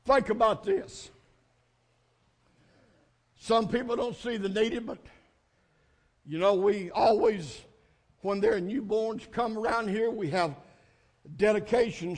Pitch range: 215-365 Hz